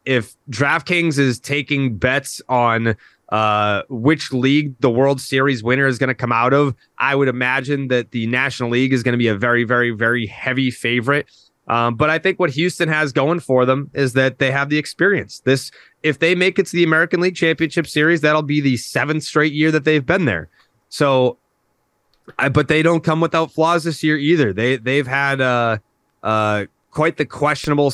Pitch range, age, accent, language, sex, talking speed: 115-150 Hz, 20-39, American, English, male, 200 wpm